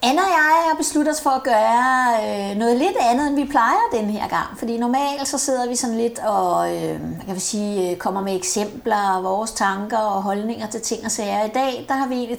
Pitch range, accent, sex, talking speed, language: 210-260 Hz, native, female, 230 wpm, Danish